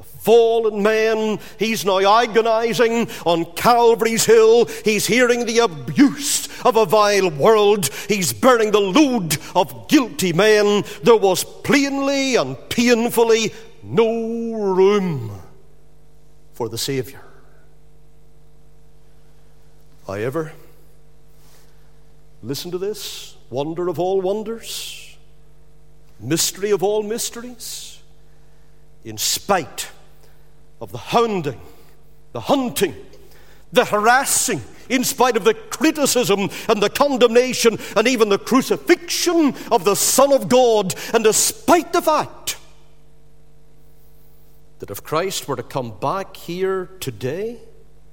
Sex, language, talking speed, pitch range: male, English, 105 wpm, 150-235 Hz